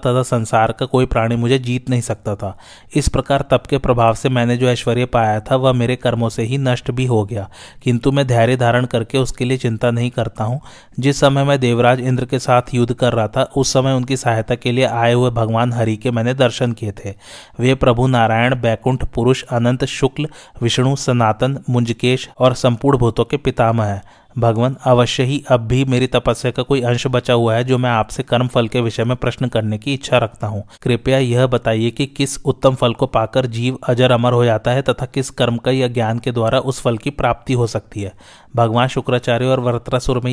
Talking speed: 210 wpm